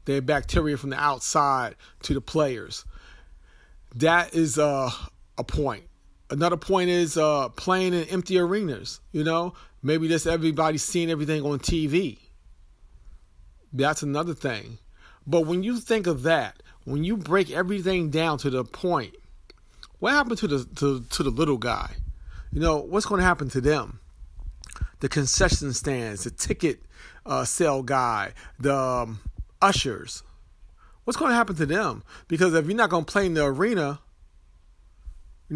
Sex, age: male, 40-59